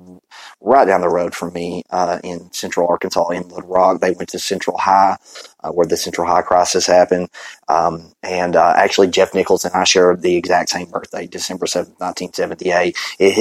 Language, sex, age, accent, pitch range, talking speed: English, male, 30-49, American, 90-115 Hz, 185 wpm